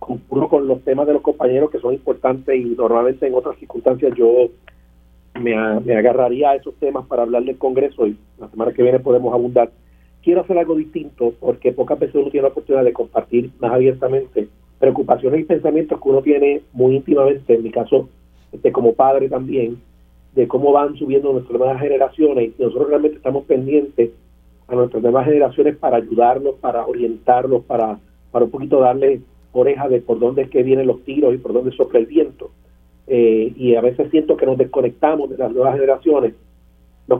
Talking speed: 190 wpm